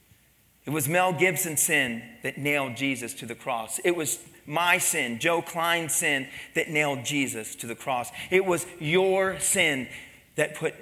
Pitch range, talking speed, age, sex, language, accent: 150-220 Hz, 165 wpm, 40-59, male, English, American